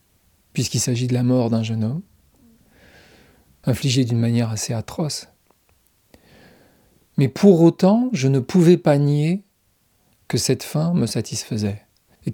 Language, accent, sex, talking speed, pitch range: French, French, male, 130 wpm, 115-135 Hz